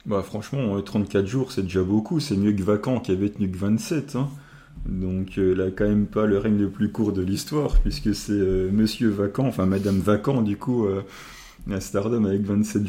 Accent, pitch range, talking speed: French, 100-110 Hz, 210 wpm